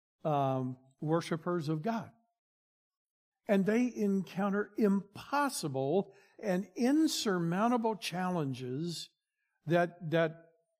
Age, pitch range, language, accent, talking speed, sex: 60-79, 165-215 Hz, English, American, 70 wpm, male